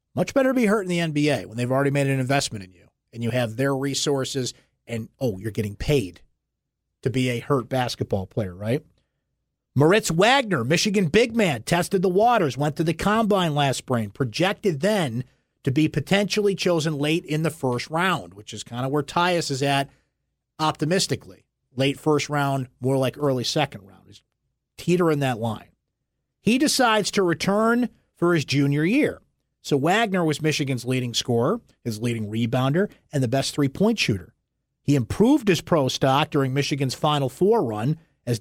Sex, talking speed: male, 175 wpm